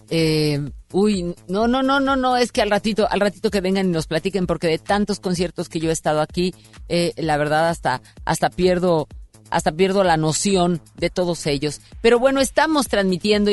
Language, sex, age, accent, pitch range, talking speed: Spanish, female, 40-59, Mexican, 180-220 Hz, 195 wpm